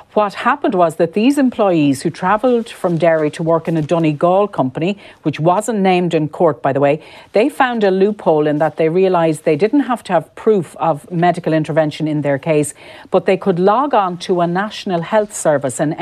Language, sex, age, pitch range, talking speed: English, female, 50-69, 160-190 Hz, 205 wpm